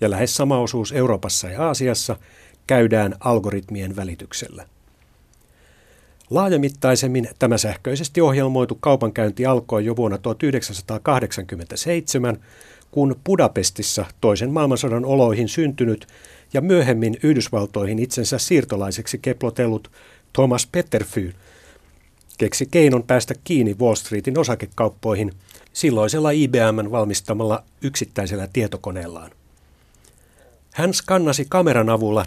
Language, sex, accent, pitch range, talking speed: Finnish, male, native, 105-135 Hz, 90 wpm